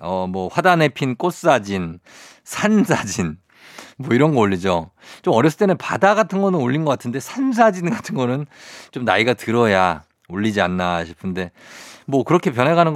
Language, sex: Korean, male